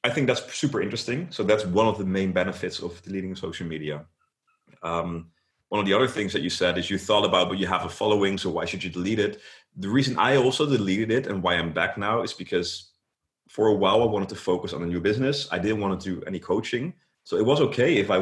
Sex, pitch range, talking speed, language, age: male, 90-105 Hz, 255 wpm, English, 30-49